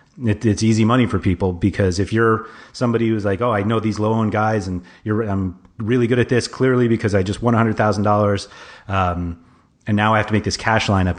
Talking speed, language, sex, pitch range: 220 wpm, English, male, 100-115 Hz